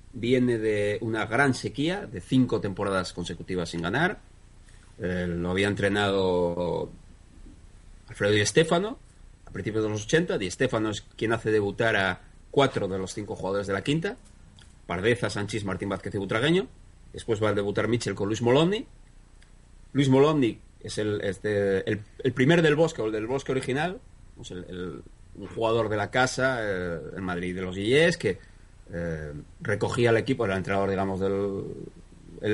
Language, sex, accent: Spanish, male, Spanish